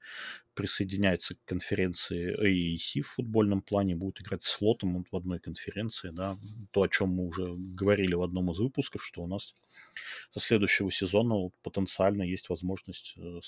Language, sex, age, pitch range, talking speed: Russian, male, 30-49, 90-110 Hz, 155 wpm